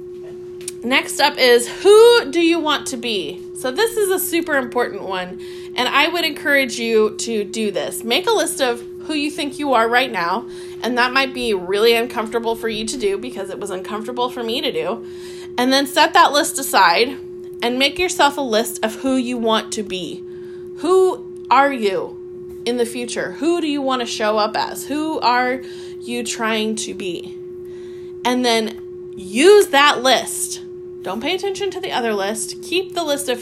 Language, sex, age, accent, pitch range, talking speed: English, female, 20-39, American, 230-360 Hz, 190 wpm